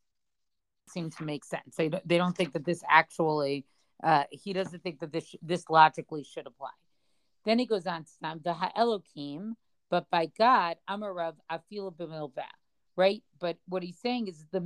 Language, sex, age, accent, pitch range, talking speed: English, female, 40-59, American, 165-215 Hz, 170 wpm